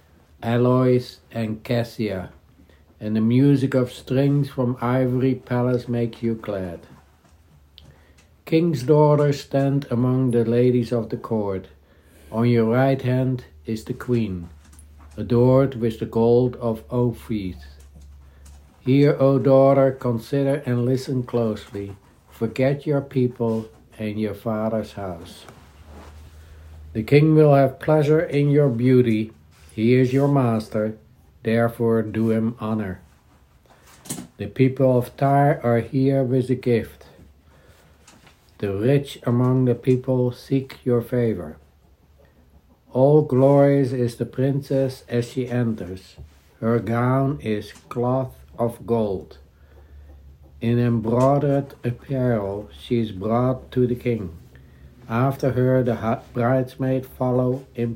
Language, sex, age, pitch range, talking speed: English, male, 60-79, 95-130 Hz, 115 wpm